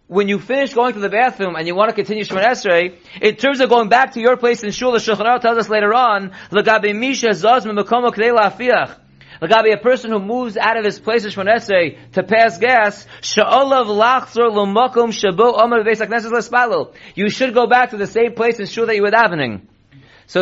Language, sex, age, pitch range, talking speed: English, male, 30-49, 195-235 Hz, 185 wpm